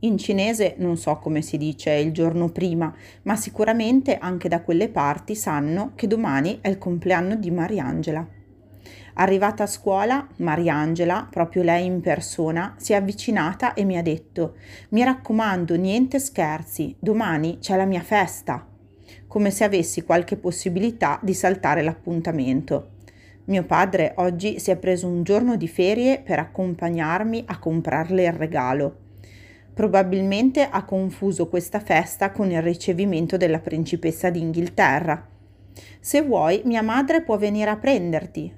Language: Italian